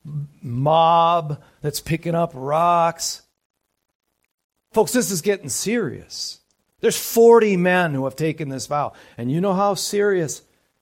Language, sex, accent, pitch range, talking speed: English, male, American, 130-170 Hz, 130 wpm